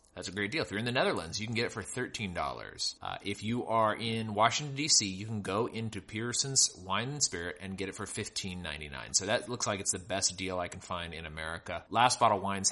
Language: English